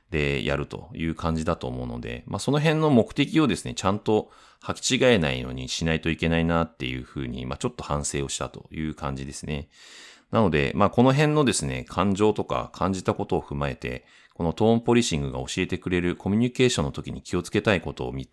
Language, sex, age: Japanese, male, 30-49